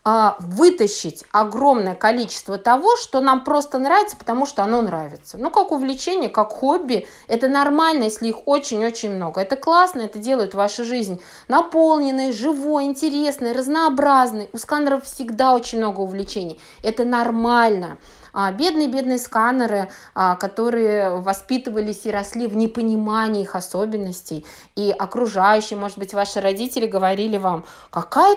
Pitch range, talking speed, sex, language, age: 205-290 Hz, 130 wpm, female, Russian, 20-39